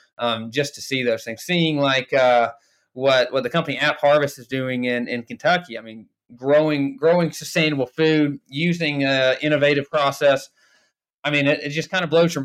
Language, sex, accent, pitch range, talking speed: English, male, American, 120-150 Hz, 190 wpm